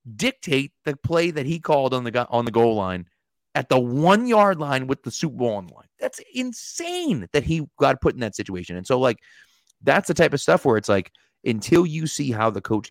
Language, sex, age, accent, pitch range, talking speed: English, male, 30-49, American, 110-160 Hz, 235 wpm